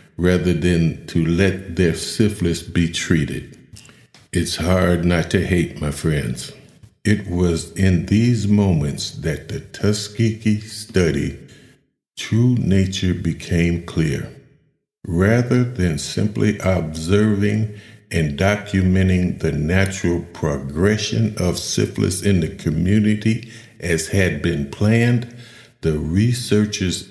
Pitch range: 85-105 Hz